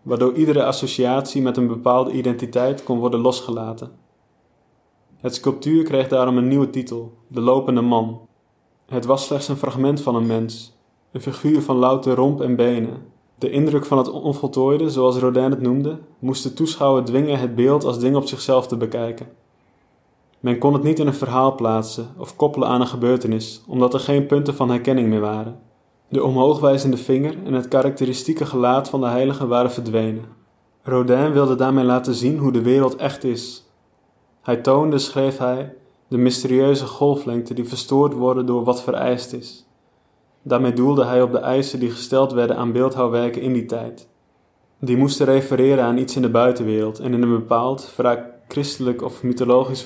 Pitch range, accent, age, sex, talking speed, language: 120-135 Hz, Dutch, 20-39, male, 170 wpm, Dutch